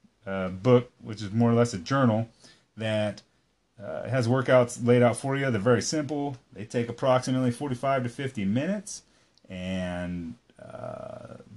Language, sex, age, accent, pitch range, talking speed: English, male, 30-49, American, 105-130 Hz, 150 wpm